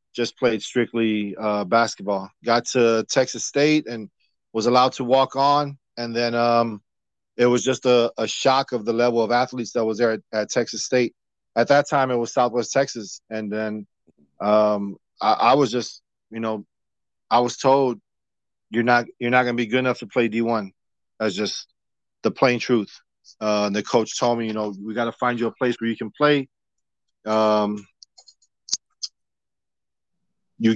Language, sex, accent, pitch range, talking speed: English, male, American, 110-130 Hz, 185 wpm